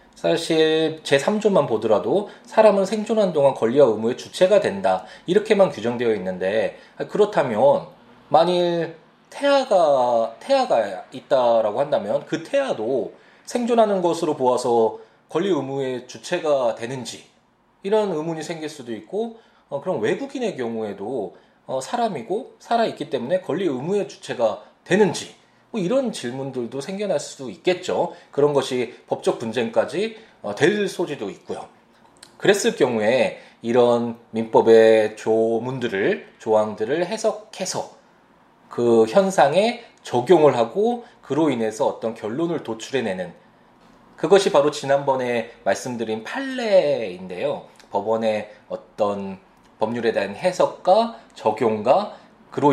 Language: Korean